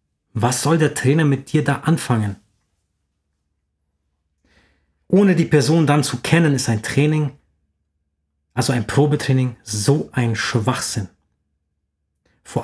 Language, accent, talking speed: German, German, 115 wpm